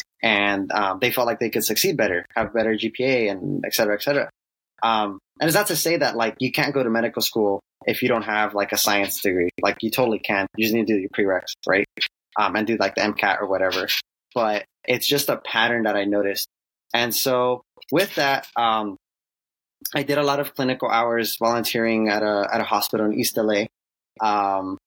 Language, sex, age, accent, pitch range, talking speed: English, male, 20-39, American, 100-120 Hz, 215 wpm